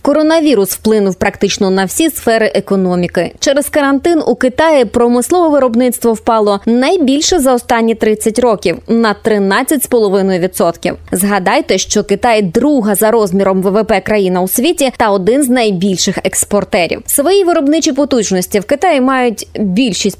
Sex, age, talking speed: female, 20-39, 130 wpm